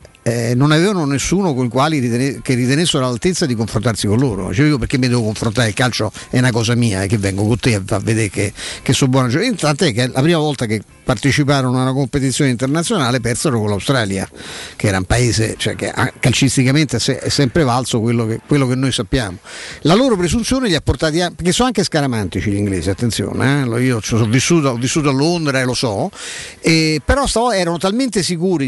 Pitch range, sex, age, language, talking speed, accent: 120-150 Hz, male, 50-69, Italian, 210 wpm, native